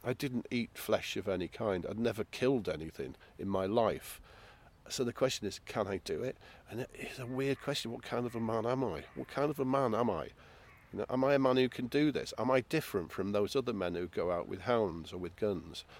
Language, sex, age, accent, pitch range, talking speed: English, male, 50-69, British, 95-120 Hz, 240 wpm